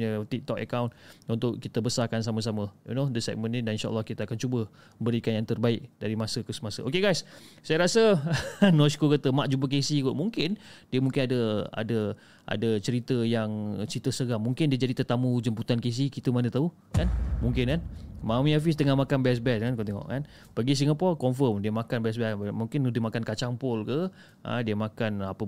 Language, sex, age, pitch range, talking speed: Malay, male, 30-49, 115-160 Hz, 195 wpm